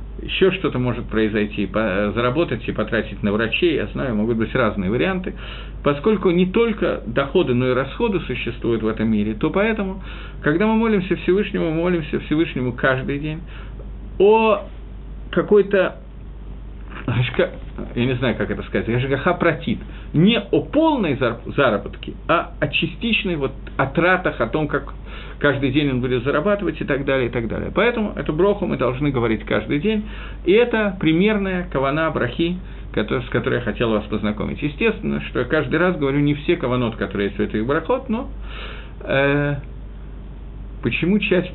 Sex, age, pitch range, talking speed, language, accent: male, 50-69, 115-175 Hz, 150 wpm, Russian, native